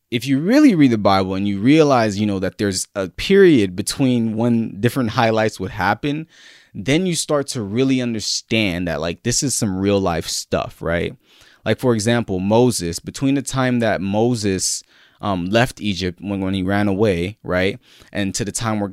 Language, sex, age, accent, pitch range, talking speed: English, male, 20-39, American, 100-135 Hz, 185 wpm